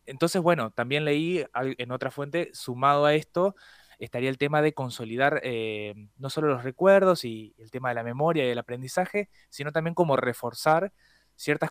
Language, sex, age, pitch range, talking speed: Spanish, male, 20-39, 120-155 Hz, 175 wpm